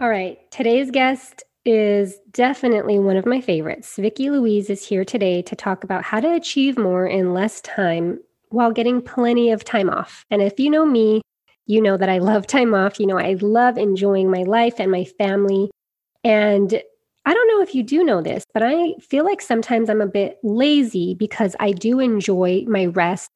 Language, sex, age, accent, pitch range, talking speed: English, female, 20-39, American, 190-245 Hz, 200 wpm